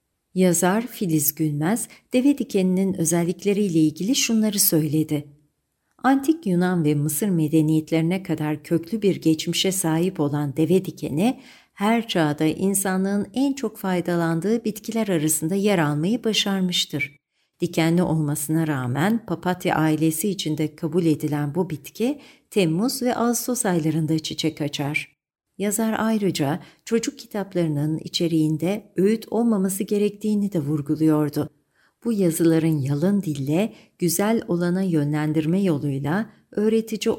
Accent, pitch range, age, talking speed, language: native, 155-210 Hz, 60-79, 110 wpm, Turkish